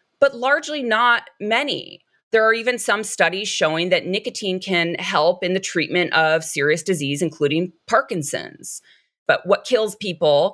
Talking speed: 150 wpm